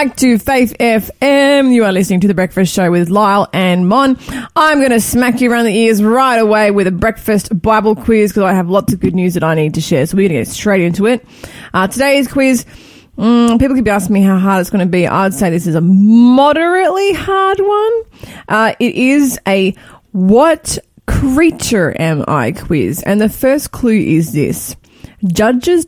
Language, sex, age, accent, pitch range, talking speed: English, female, 20-39, Australian, 185-250 Hz, 205 wpm